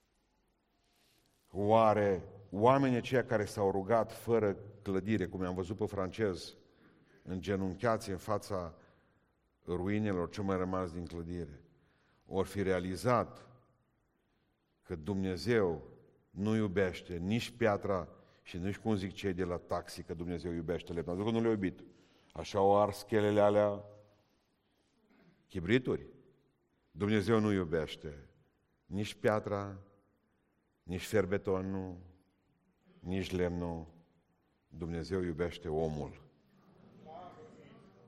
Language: Romanian